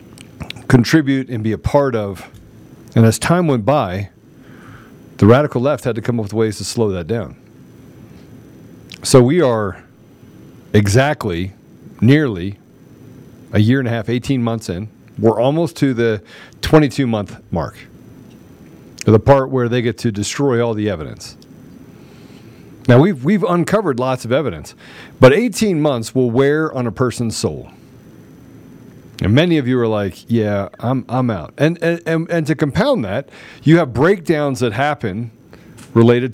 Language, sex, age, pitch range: English, male, 40-59, 110-140 Hz